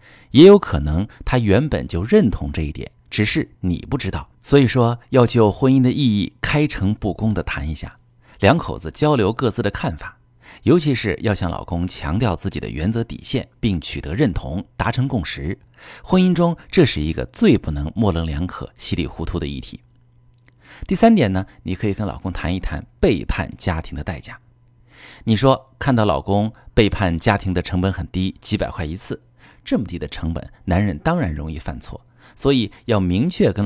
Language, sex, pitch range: Chinese, male, 85-120 Hz